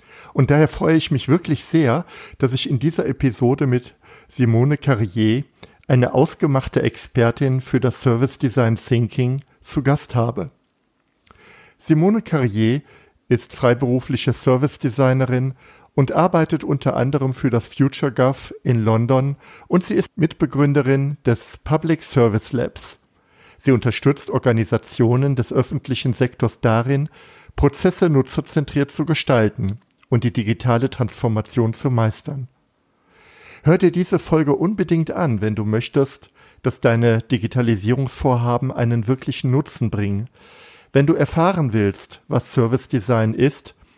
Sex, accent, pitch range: male, German, 120-145 Hz